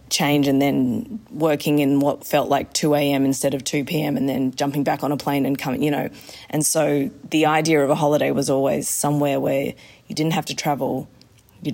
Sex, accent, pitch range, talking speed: female, Australian, 140-155 Hz, 205 wpm